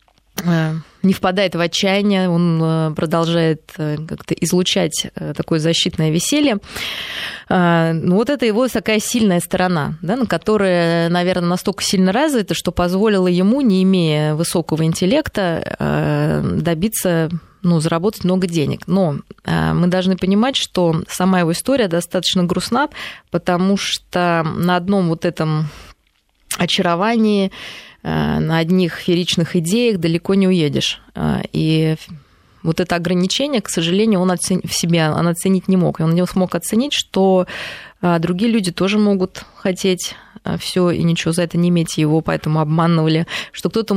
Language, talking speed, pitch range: Russian, 125 wpm, 165-190 Hz